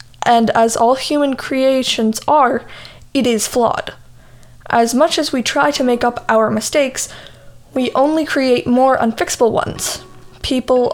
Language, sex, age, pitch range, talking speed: English, female, 10-29, 230-280 Hz, 145 wpm